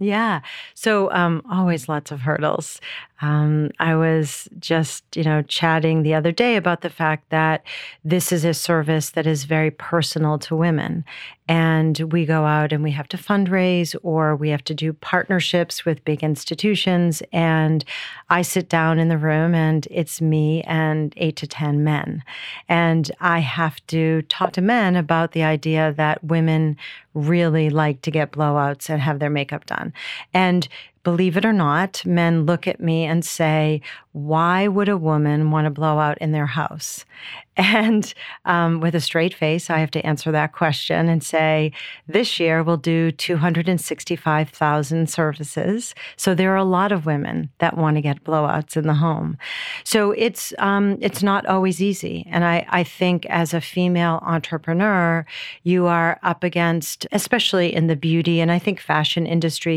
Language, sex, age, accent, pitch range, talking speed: English, female, 40-59, American, 155-175 Hz, 170 wpm